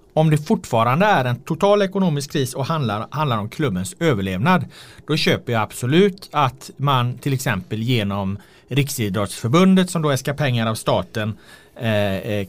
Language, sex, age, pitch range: Swedish, male, 30-49, 110-165 Hz